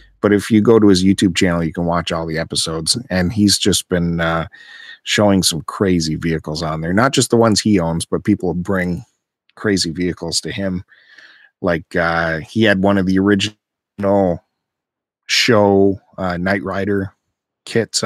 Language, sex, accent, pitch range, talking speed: English, male, American, 90-115 Hz, 170 wpm